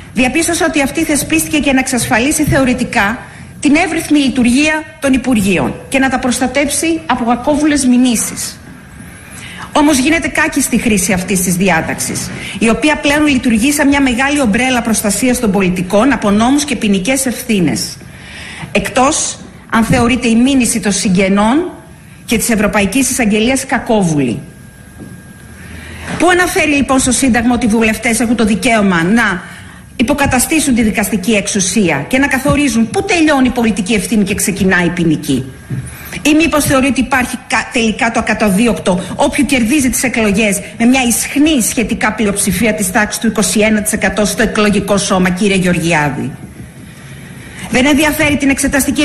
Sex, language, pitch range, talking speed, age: female, Greek, 215-275 Hz, 140 wpm, 40-59